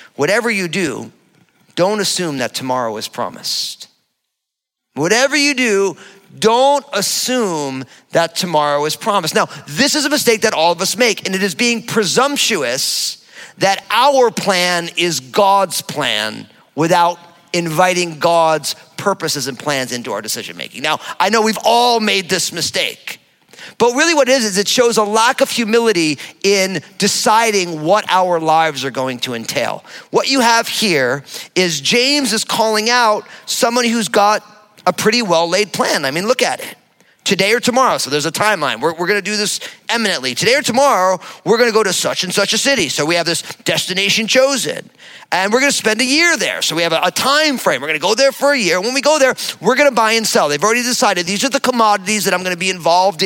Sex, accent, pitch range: male, American, 180-255 Hz